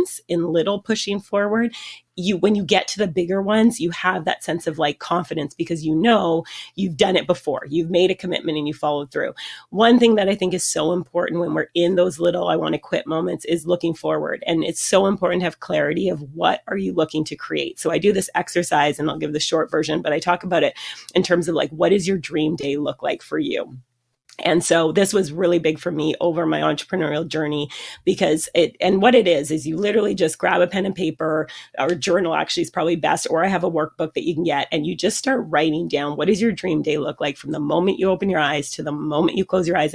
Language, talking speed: English, 250 wpm